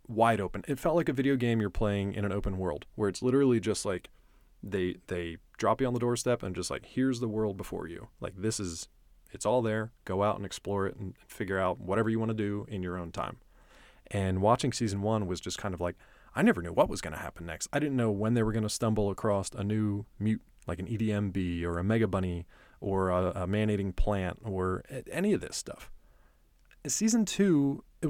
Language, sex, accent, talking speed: English, male, American, 230 wpm